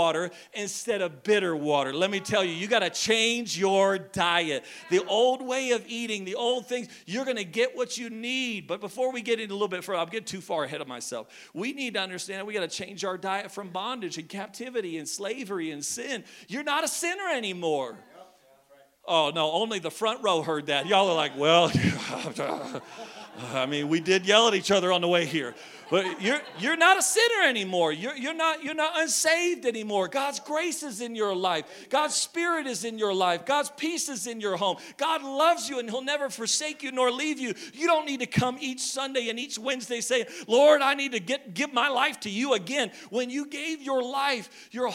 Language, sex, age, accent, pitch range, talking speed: English, male, 40-59, American, 195-290 Hz, 220 wpm